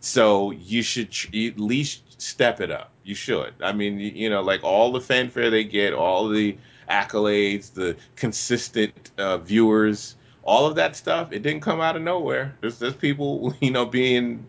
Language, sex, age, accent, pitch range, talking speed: English, male, 30-49, American, 115-140 Hz, 180 wpm